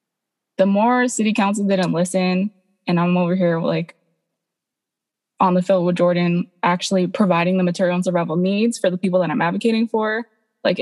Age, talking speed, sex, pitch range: 20-39, 170 wpm, female, 175-215 Hz